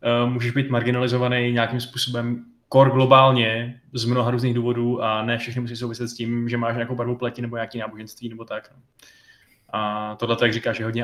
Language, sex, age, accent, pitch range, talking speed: Czech, male, 20-39, native, 115-125 Hz, 185 wpm